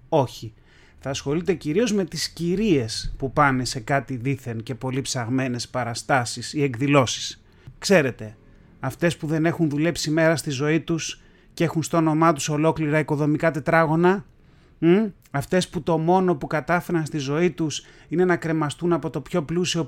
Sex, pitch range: male, 135-185 Hz